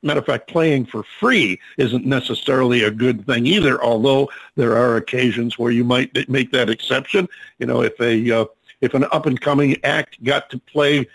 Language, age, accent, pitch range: English, 50-69, American, 120-150 Hz